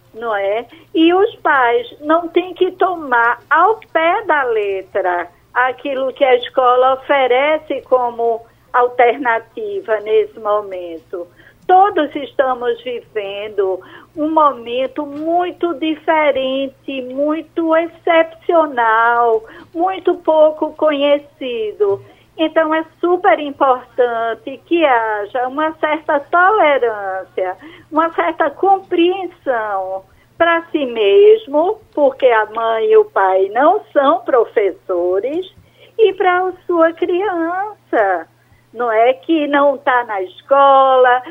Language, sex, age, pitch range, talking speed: Portuguese, female, 50-69, 235-330 Hz, 100 wpm